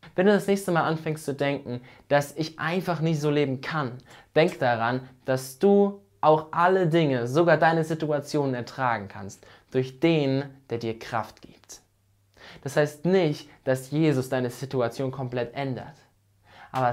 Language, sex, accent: German, male, German